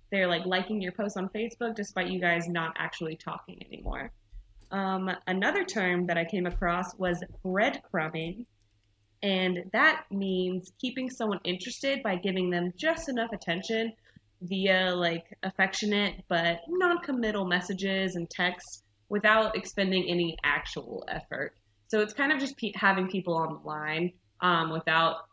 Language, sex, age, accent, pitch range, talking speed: English, female, 20-39, American, 175-210 Hz, 140 wpm